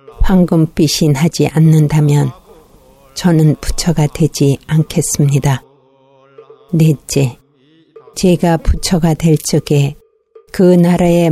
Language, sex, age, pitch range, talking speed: English, female, 50-69, 145-175 Hz, 75 wpm